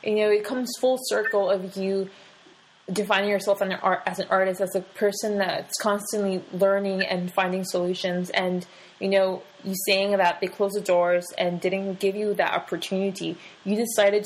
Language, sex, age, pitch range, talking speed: English, female, 20-39, 185-215 Hz, 175 wpm